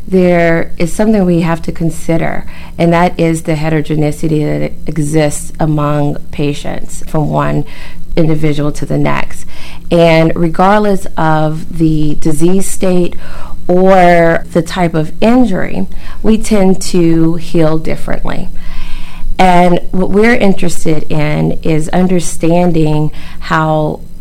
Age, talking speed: 30-49, 115 wpm